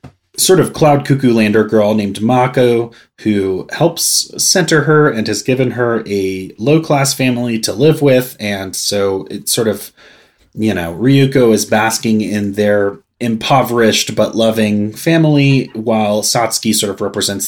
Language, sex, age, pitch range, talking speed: English, male, 30-49, 100-125 Hz, 150 wpm